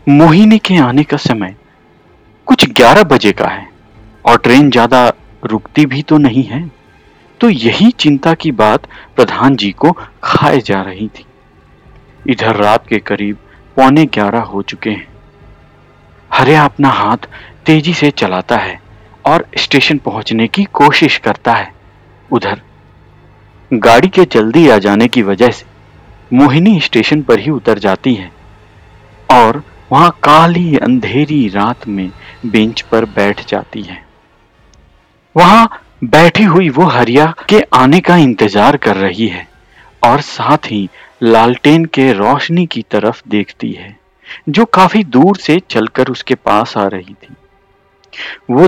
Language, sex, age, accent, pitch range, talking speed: Hindi, male, 50-69, native, 105-150 Hz, 140 wpm